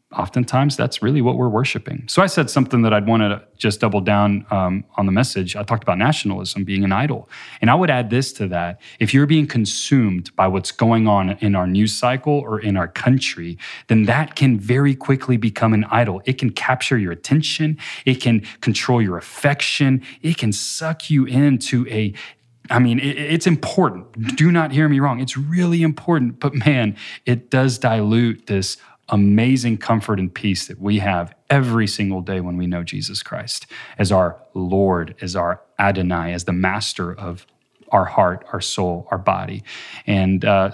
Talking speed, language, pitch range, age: 185 wpm, English, 100-130 Hz, 30-49